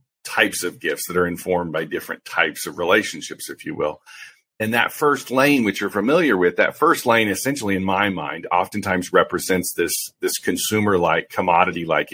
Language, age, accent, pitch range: English, 40-59, American, 90-120 Hz